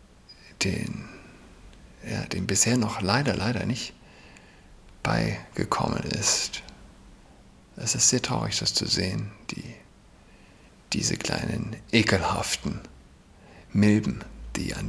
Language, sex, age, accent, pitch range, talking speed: German, male, 50-69, German, 95-115 Hz, 95 wpm